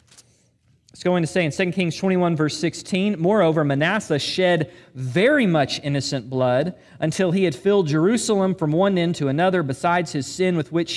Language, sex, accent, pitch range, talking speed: English, male, American, 155-210 Hz, 170 wpm